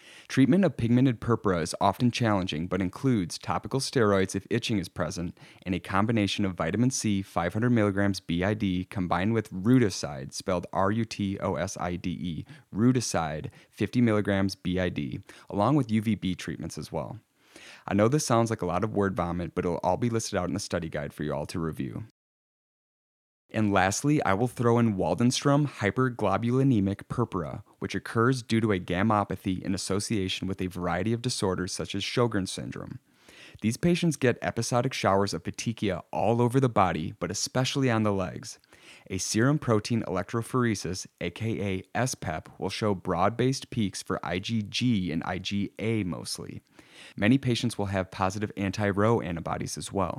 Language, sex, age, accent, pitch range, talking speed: English, male, 30-49, American, 90-115 Hz, 155 wpm